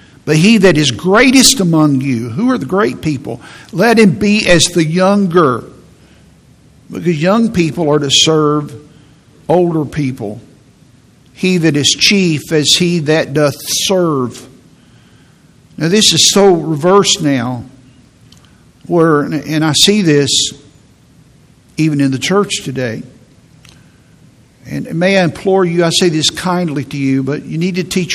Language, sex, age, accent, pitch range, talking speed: English, male, 60-79, American, 145-180 Hz, 145 wpm